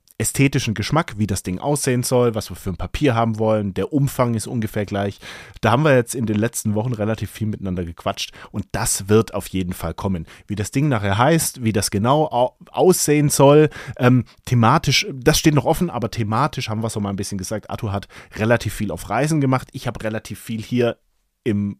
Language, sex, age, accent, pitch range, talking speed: German, male, 30-49, German, 100-130 Hz, 210 wpm